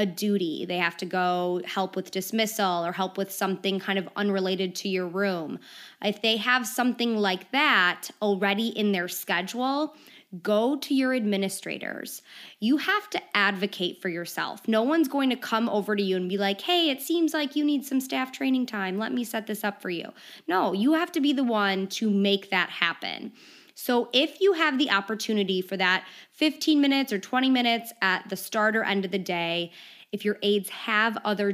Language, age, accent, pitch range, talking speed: English, 20-39, American, 190-250 Hz, 195 wpm